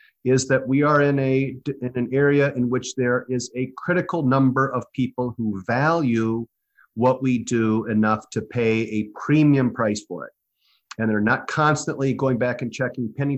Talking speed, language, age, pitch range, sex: 180 wpm, English, 50-69, 115-140 Hz, male